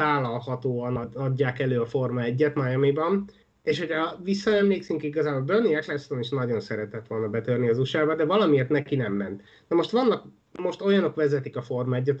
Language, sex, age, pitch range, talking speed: Hungarian, male, 30-49, 135-170 Hz, 175 wpm